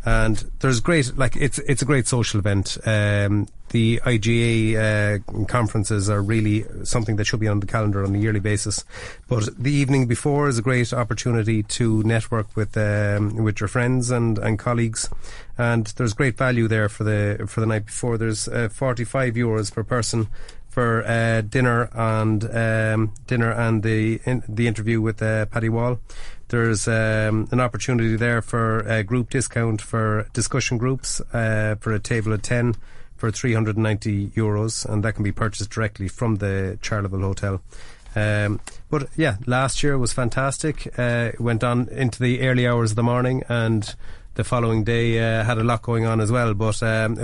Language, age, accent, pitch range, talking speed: English, 30-49, Irish, 110-120 Hz, 180 wpm